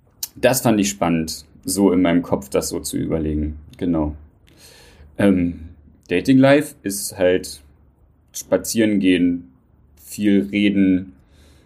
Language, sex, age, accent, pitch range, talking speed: German, male, 30-49, German, 90-110 Hz, 110 wpm